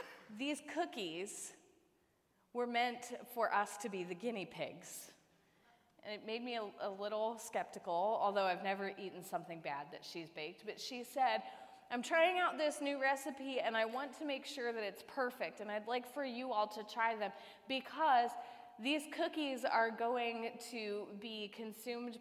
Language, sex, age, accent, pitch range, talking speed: English, female, 20-39, American, 185-245 Hz, 170 wpm